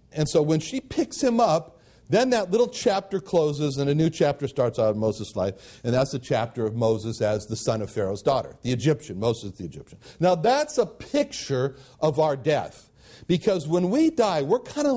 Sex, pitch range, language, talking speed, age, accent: male, 125-170 Hz, English, 210 wpm, 60-79, American